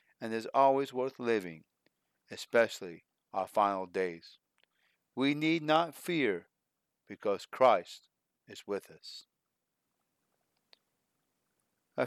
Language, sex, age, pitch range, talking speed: English, male, 40-59, 115-150 Hz, 95 wpm